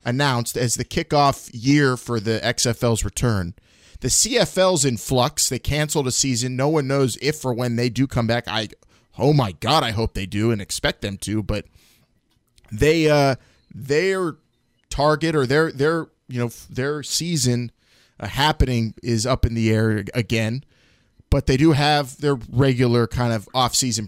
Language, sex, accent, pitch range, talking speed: English, male, American, 110-135 Hz, 170 wpm